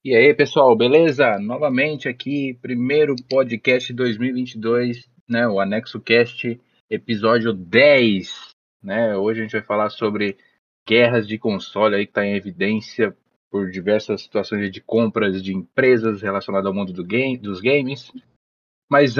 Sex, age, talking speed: male, 20-39, 130 wpm